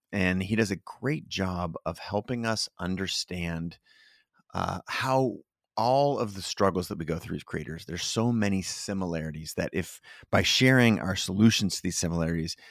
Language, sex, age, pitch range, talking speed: English, male, 30-49, 90-110 Hz, 165 wpm